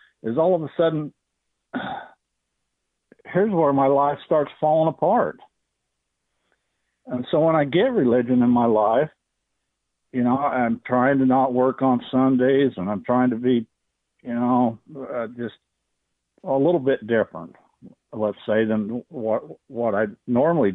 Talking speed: 145 wpm